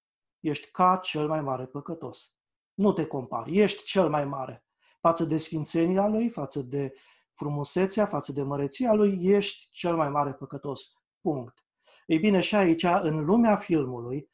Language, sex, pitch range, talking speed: Romanian, male, 145-200 Hz, 155 wpm